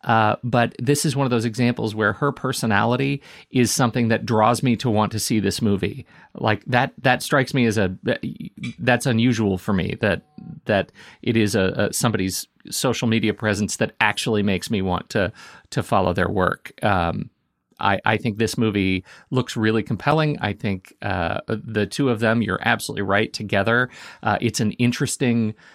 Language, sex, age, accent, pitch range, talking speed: English, male, 40-59, American, 100-125 Hz, 180 wpm